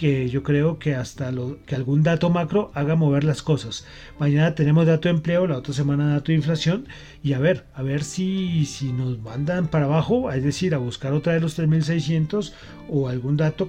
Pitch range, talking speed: 135-175 Hz, 205 wpm